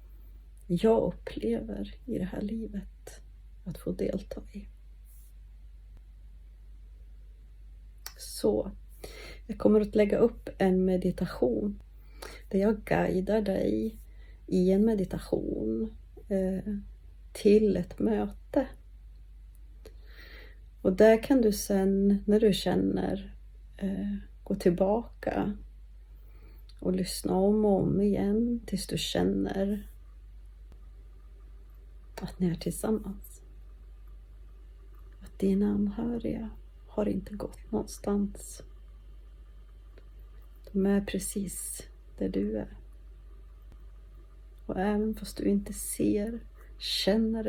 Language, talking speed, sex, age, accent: Swedish, 90 wpm, female, 40-59, native